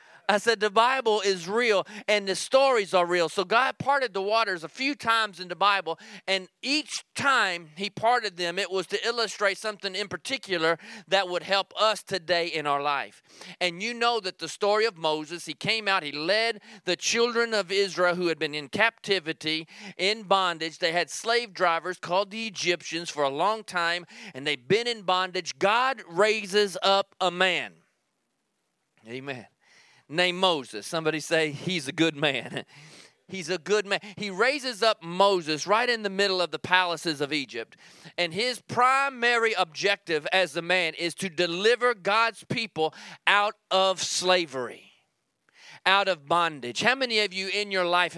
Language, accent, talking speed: English, American, 175 wpm